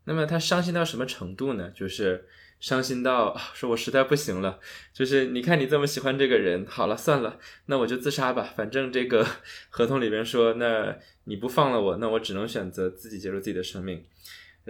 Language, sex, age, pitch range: Chinese, male, 20-39, 95-135 Hz